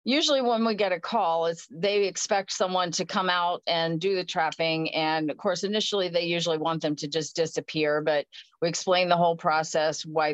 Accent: American